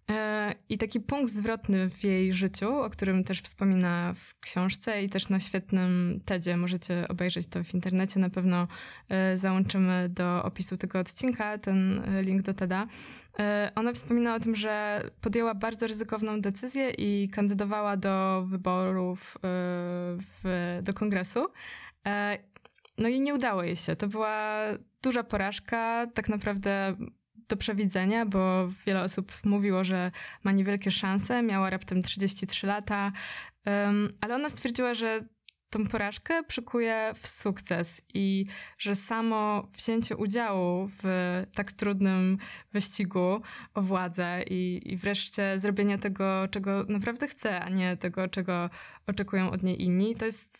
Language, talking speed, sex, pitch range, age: Polish, 135 wpm, female, 185-215 Hz, 20-39